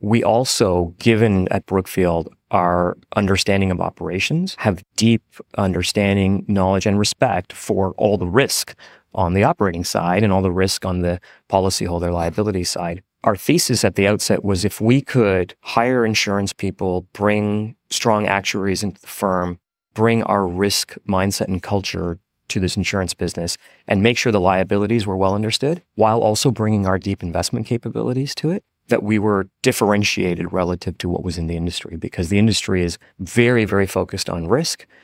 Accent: American